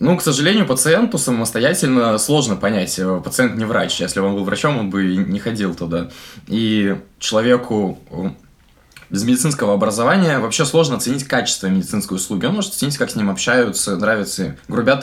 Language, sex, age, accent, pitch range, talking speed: Russian, male, 20-39, native, 95-130 Hz, 165 wpm